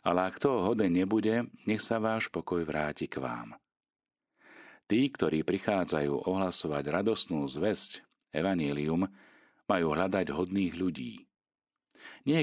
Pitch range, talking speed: 75-105 Hz, 115 wpm